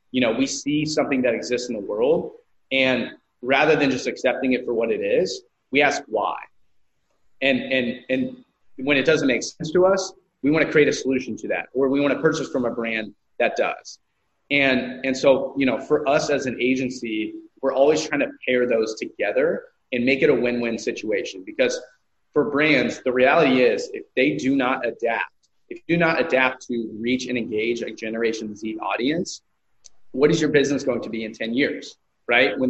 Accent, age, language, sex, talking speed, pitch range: American, 30-49, English, male, 200 wpm, 120-160 Hz